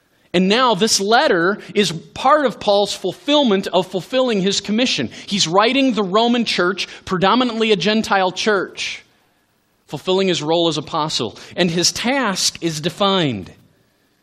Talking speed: 135 wpm